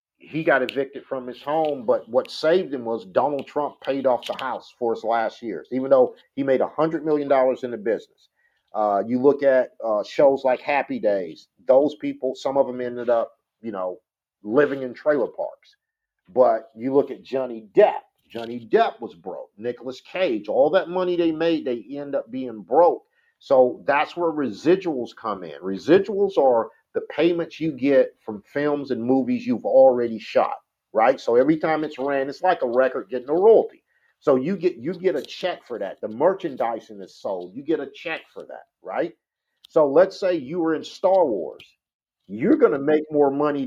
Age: 50-69